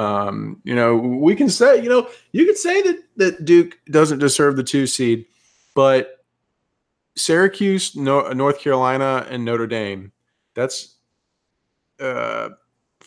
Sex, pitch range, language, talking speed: male, 110-135 Hz, English, 125 wpm